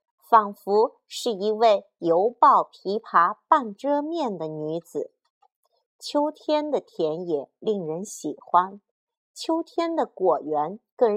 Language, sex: Chinese, female